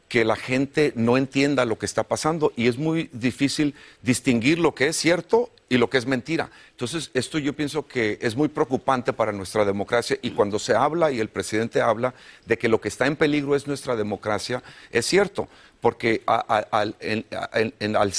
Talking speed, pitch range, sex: 185 wpm, 115-150 Hz, male